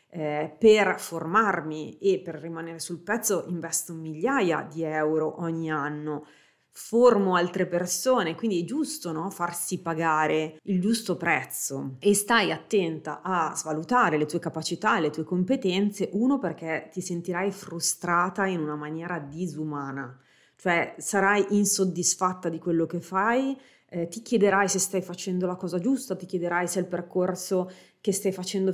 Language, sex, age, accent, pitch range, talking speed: Italian, female, 30-49, native, 160-200 Hz, 145 wpm